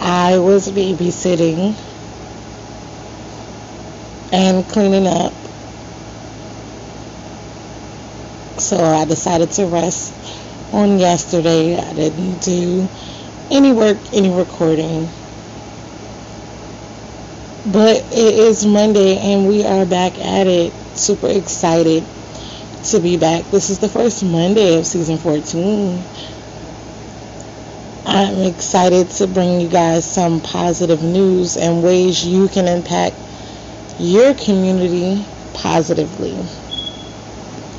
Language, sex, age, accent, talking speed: English, female, 30-49, American, 95 wpm